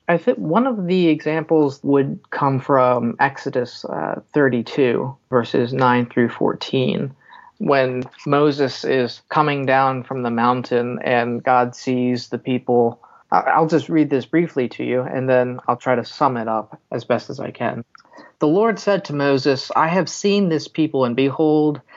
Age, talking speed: 30-49, 165 wpm